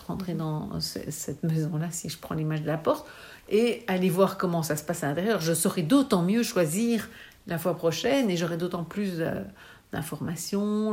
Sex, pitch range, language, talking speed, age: female, 165-200 Hz, French, 185 wpm, 60-79